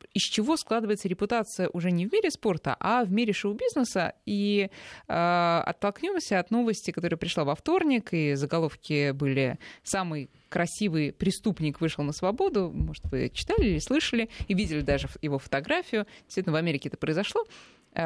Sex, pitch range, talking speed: female, 155-210 Hz, 155 wpm